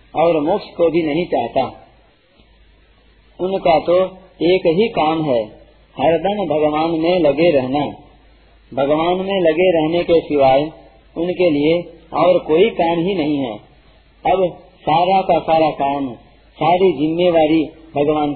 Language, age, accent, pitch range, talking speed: Hindi, 50-69, native, 145-180 Hz, 130 wpm